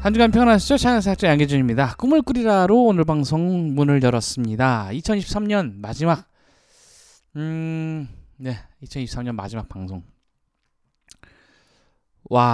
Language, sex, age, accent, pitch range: Korean, male, 20-39, native, 120-170 Hz